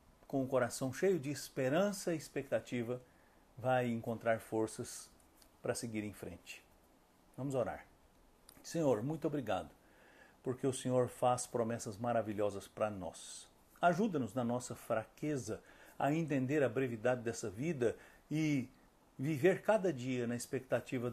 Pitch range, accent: 110-140 Hz, Brazilian